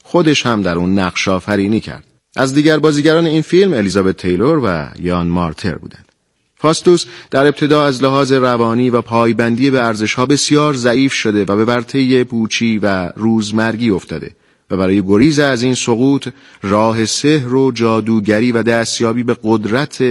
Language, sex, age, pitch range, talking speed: Persian, male, 40-59, 105-140 Hz, 155 wpm